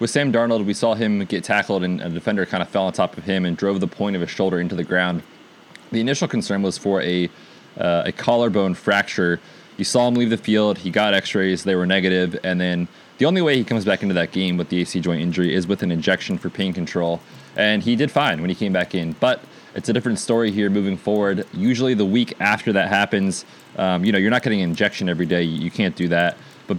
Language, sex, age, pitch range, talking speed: English, male, 20-39, 90-105 Hz, 250 wpm